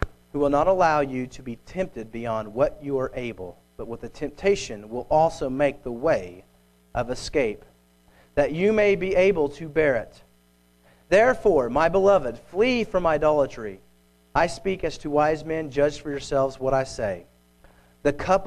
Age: 40-59